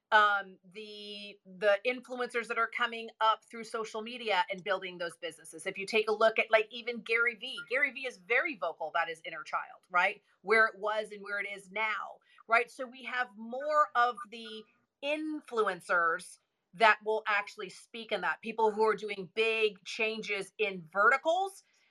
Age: 40-59